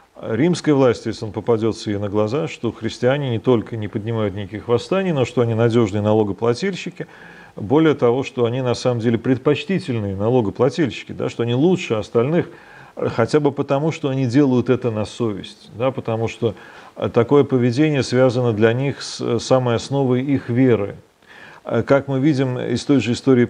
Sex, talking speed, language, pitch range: male, 165 wpm, Russian, 115-140 Hz